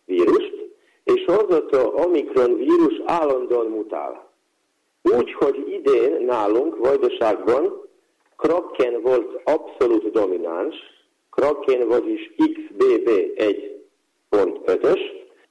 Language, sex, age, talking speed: Hungarian, male, 50-69, 75 wpm